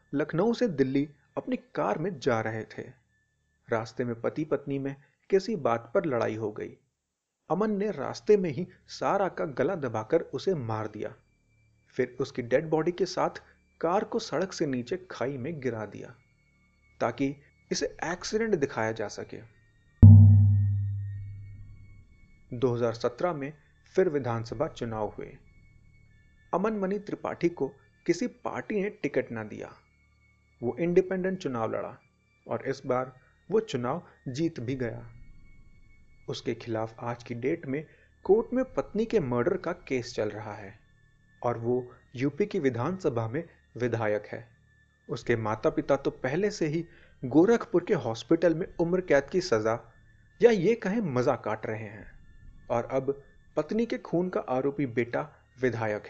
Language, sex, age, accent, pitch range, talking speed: Hindi, male, 30-49, native, 110-165 Hz, 145 wpm